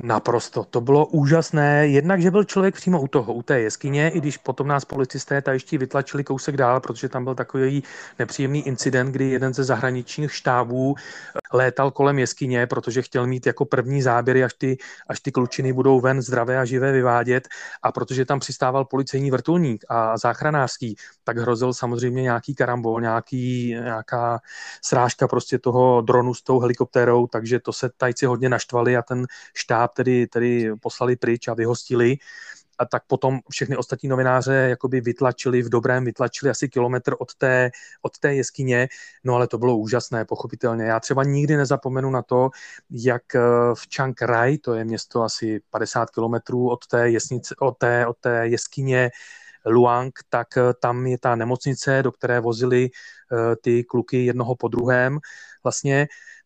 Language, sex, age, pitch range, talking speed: Czech, male, 30-49, 120-135 Hz, 160 wpm